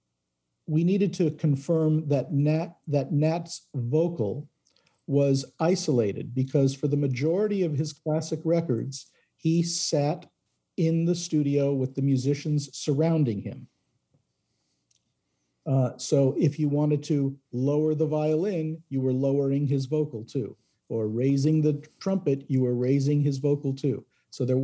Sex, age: male, 50-69